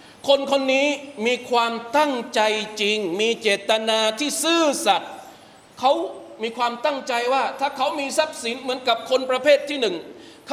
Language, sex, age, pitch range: Thai, male, 20-39, 175-255 Hz